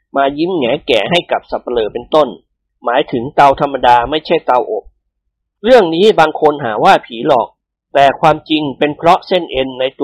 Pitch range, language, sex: 140-185 Hz, Thai, male